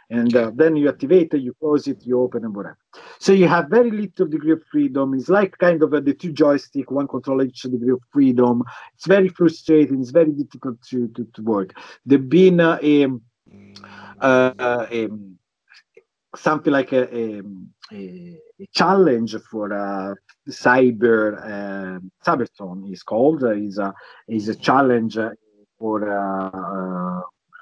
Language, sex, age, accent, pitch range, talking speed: English, male, 50-69, Italian, 115-165 Hz, 155 wpm